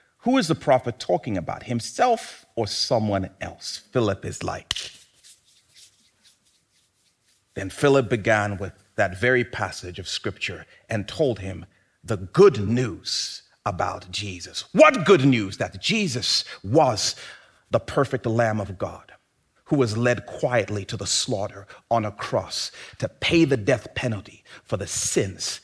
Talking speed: 140 wpm